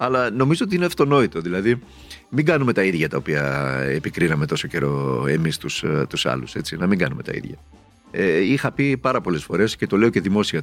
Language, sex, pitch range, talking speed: Greek, male, 90-130 Hz, 190 wpm